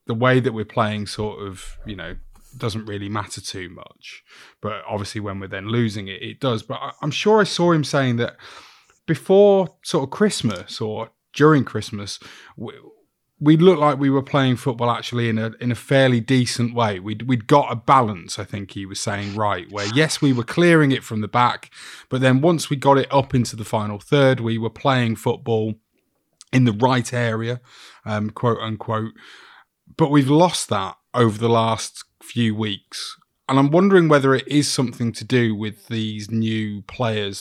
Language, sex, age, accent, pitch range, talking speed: English, male, 30-49, British, 110-135 Hz, 190 wpm